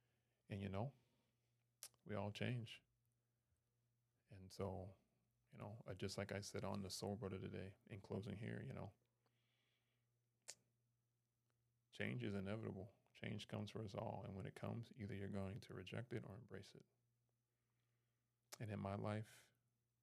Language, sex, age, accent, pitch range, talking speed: English, male, 30-49, American, 100-120 Hz, 145 wpm